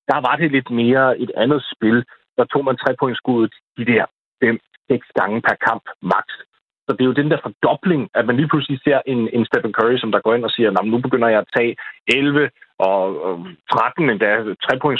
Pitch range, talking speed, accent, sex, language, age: 120-155 Hz, 215 wpm, native, male, Danish, 30-49